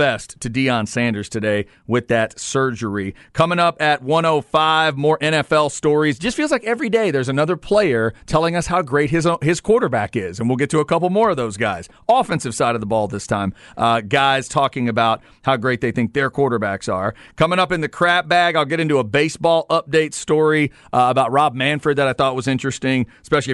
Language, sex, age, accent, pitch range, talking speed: English, male, 40-59, American, 125-160 Hz, 210 wpm